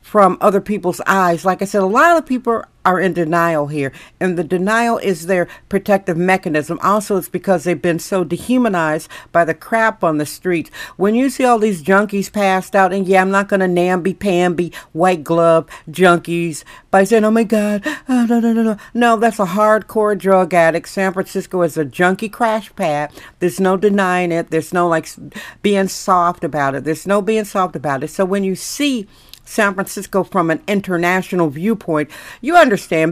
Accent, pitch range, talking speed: American, 170-210 Hz, 190 wpm